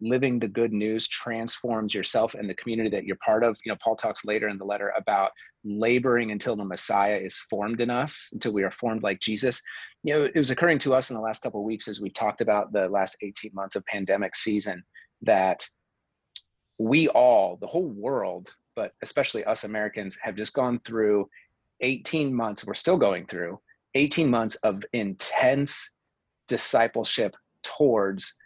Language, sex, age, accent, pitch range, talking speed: English, male, 30-49, American, 105-125 Hz, 180 wpm